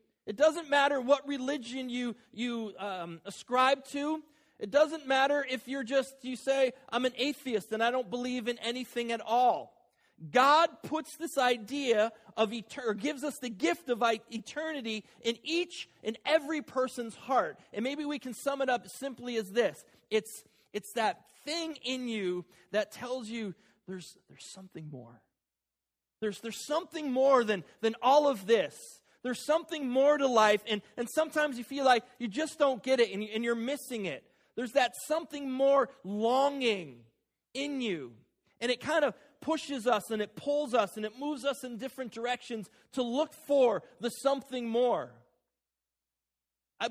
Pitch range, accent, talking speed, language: 195-270 Hz, American, 170 wpm, English